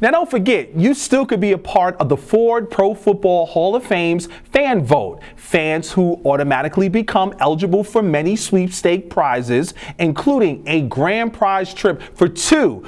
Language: English